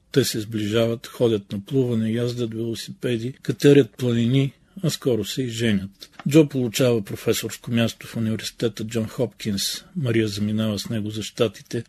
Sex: male